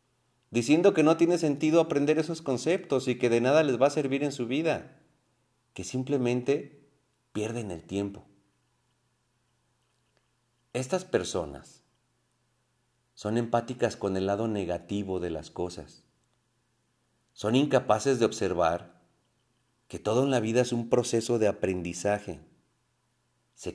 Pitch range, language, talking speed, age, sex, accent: 95-130 Hz, Spanish, 125 wpm, 40-59, male, Mexican